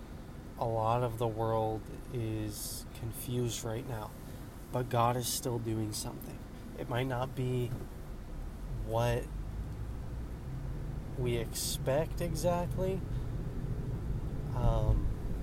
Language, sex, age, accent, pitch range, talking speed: English, male, 20-39, American, 110-130 Hz, 95 wpm